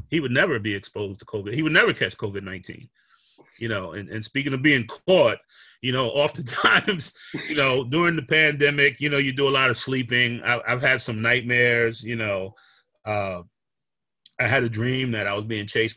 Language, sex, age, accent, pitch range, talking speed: English, male, 30-49, American, 110-140 Hz, 205 wpm